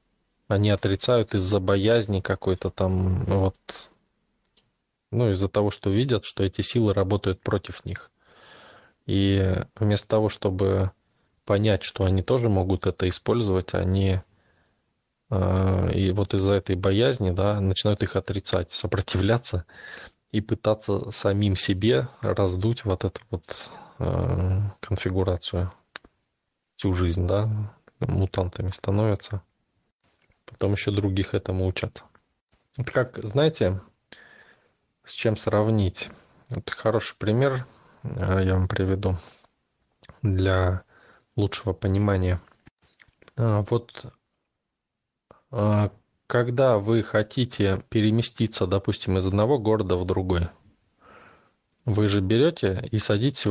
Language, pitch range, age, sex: Russian, 95-110 Hz, 20-39, male